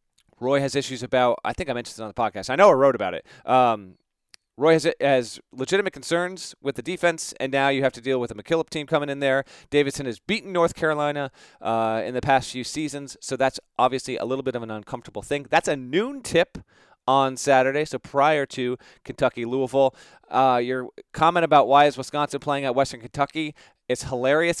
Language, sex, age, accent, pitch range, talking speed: English, male, 30-49, American, 130-160 Hz, 200 wpm